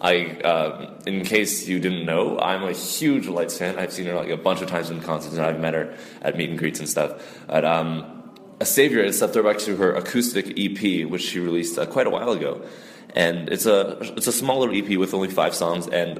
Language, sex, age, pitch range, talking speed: English, male, 20-39, 85-95 Hz, 235 wpm